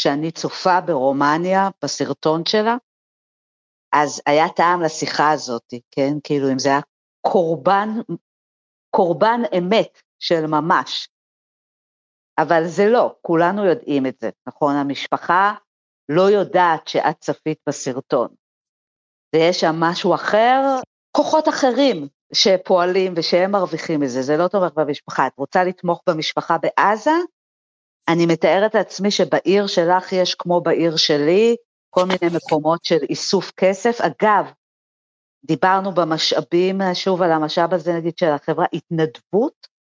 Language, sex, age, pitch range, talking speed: Hebrew, female, 50-69, 155-195 Hz, 120 wpm